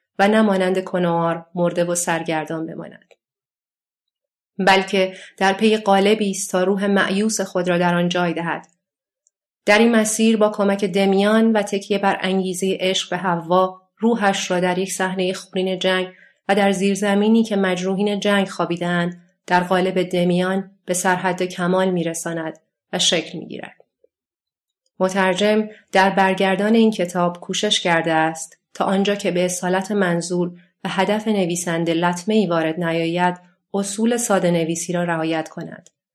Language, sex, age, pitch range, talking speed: Persian, female, 30-49, 175-195 Hz, 140 wpm